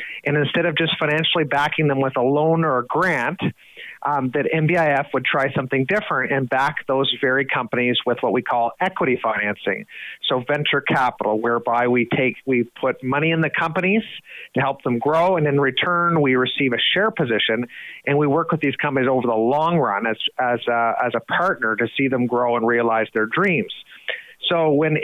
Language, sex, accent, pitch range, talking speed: English, male, American, 125-155 Hz, 195 wpm